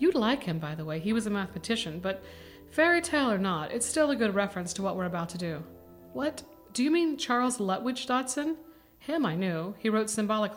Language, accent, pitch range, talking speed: English, American, 180-230 Hz, 220 wpm